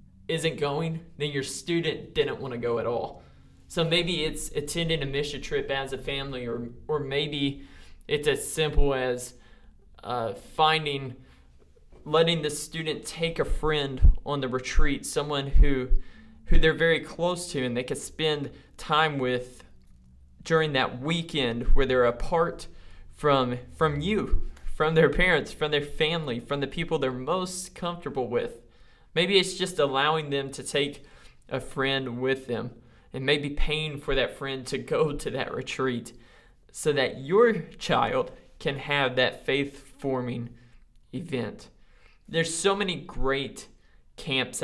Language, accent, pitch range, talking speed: English, American, 130-160 Hz, 150 wpm